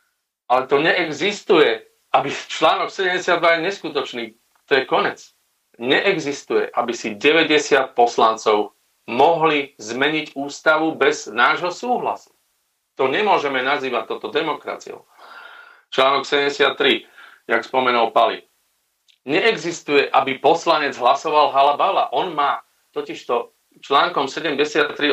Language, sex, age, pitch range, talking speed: Slovak, male, 40-59, 130-180 Hz, 100 wpm